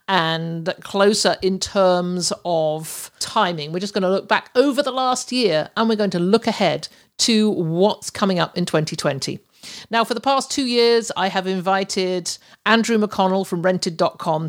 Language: English